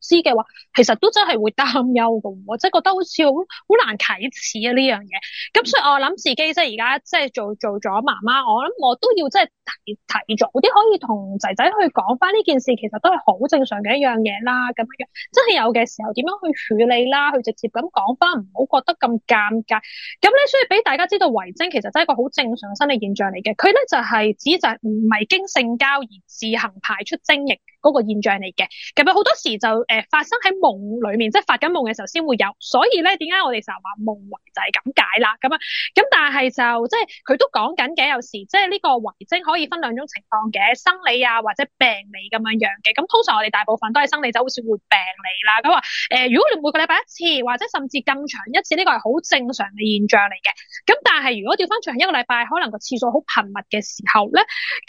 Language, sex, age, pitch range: Chinese, female, 10-29, 220-345 Hz